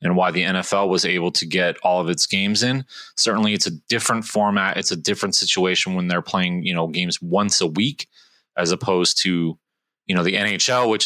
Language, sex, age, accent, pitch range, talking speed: English, male, 30-49, American, 100-130 Hz, 210 wpm